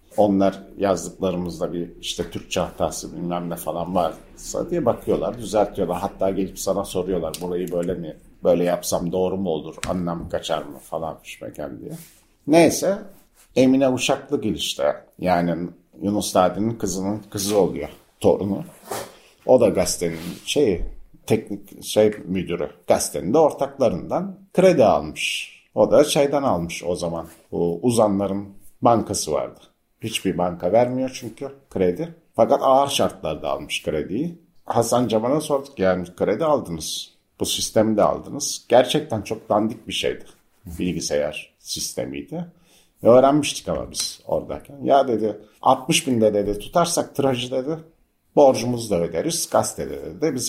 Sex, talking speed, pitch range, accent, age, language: male, 125 wpm, 90-125 Hz, native, 50-69, Turkish